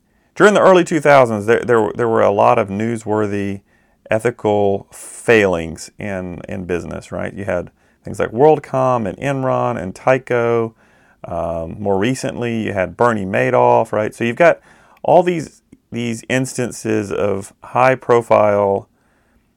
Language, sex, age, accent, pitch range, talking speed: English, male, 40-59, American, 95-125 Hz, 130 wpm